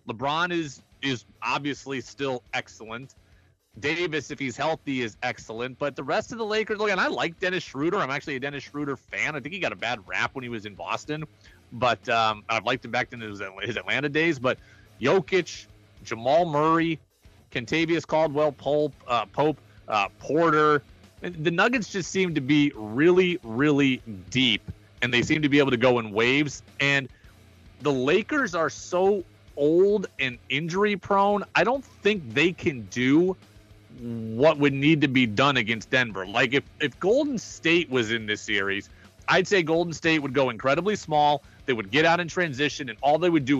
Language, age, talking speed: English, 30-49, 185 wpm